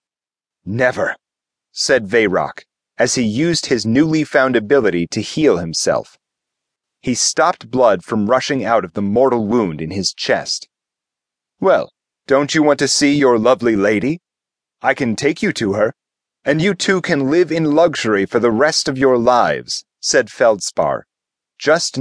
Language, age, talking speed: English, 30-49, 155 wpm